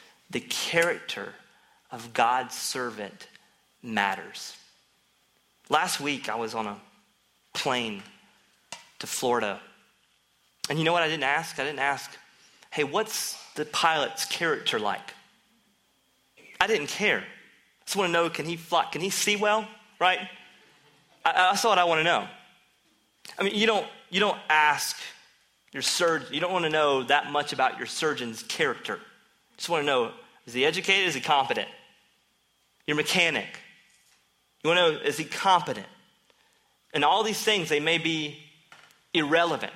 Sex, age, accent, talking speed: male, 30-49, American, 155 wpm